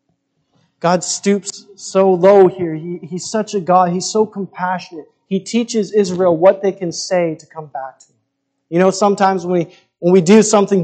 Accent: American